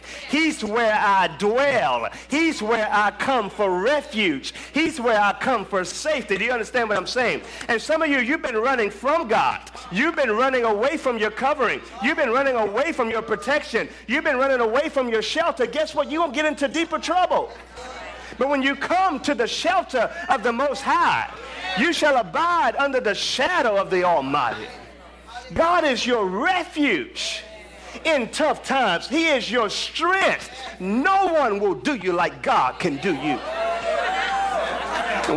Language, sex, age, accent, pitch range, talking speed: English, male, 40-59, American, 225-315 Hz, 175 wpm